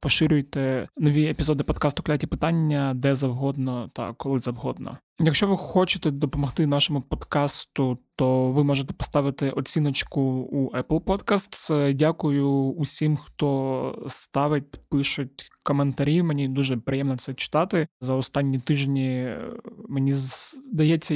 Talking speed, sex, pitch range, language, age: 115 wpm, male, 135-155 Hz, Ukrainian, 20-39